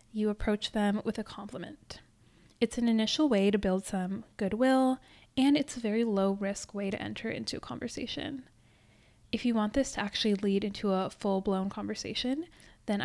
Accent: American